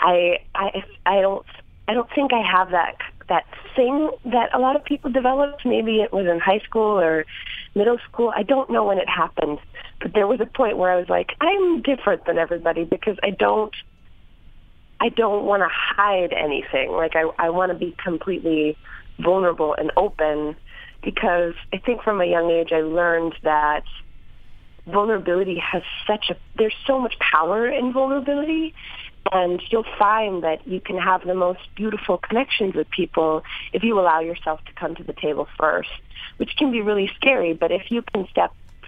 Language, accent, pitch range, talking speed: English, American, 155-215 Hz, 180 wpm